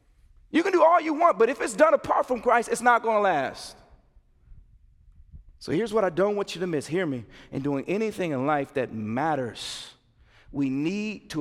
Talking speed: 205 wpm